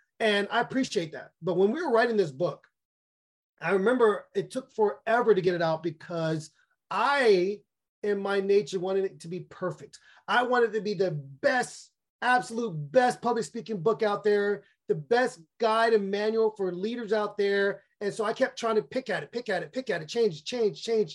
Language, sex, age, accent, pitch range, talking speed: English, male, 30-49, American, 170-215 Hz, 205 wpm